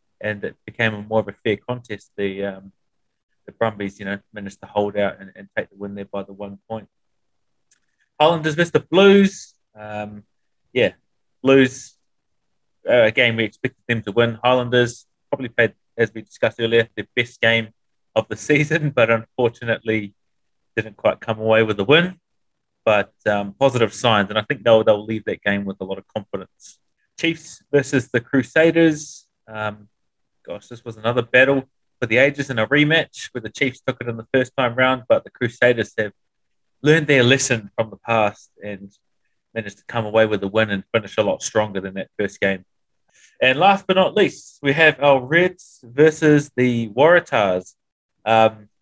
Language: English